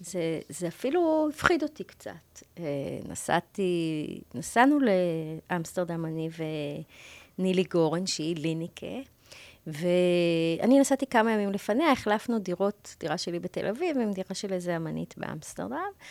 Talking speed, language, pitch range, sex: 115 wpm, Hebrew, 165-260 Hz, female